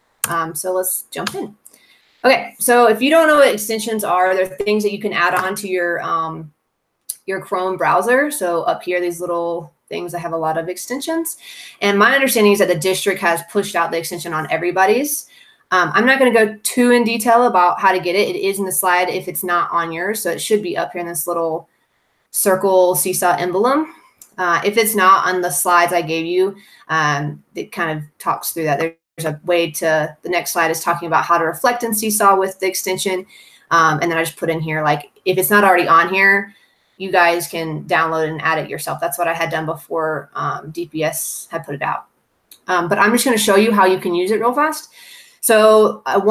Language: English